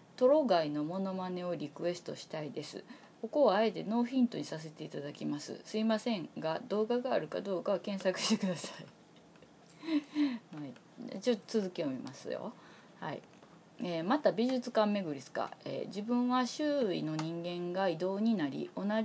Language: Japanese